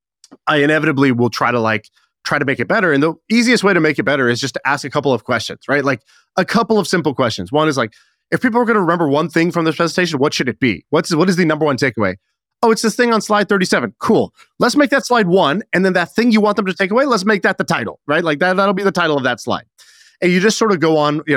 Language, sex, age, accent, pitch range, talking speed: English, male, 30-49, American, 125-185 Hz, 290 wpm